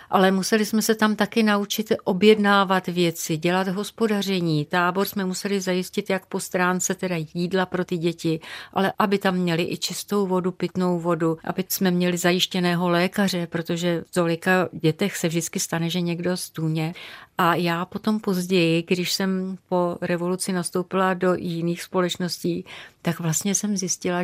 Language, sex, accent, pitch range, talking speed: Czech, female, native, 175-205 Hz, 155 wpm